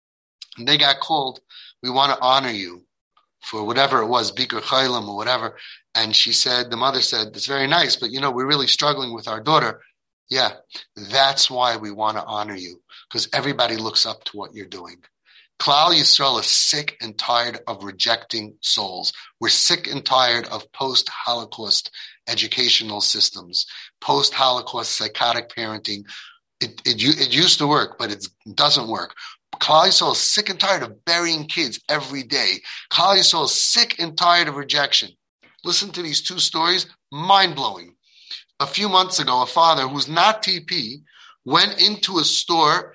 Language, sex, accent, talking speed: English, male, American, 165 wpm